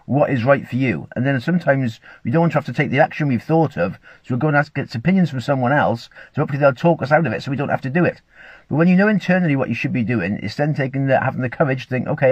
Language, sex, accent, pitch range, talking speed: English, male, British, 115-145 Hz, 310 wpm